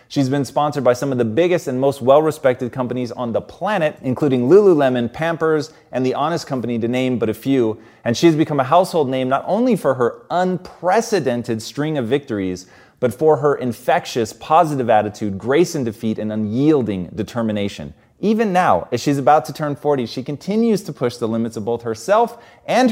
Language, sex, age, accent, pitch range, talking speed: English, male, 30-49, American, 120-165 Hz, 190 wpm